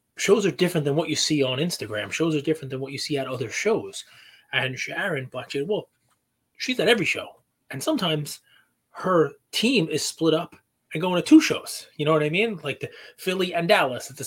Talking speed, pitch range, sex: 220 wpm, 125-165 Hz, male